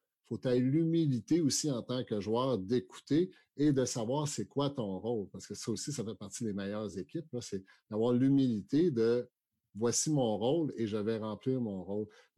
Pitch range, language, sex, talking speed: 110-140 Hz, French, male, 210 wpm